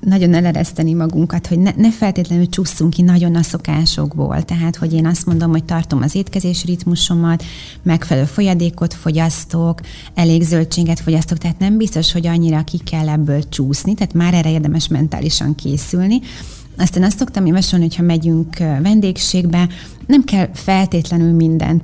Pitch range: 155-175 Hz